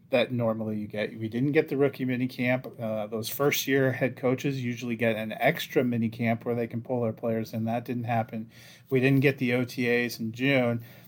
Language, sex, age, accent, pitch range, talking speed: English, male, 30-49, American, 115-135 Hz, 215 wpm